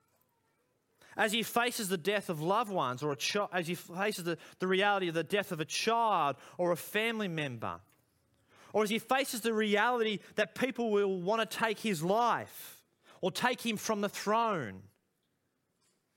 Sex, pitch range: male, 160-225 Hz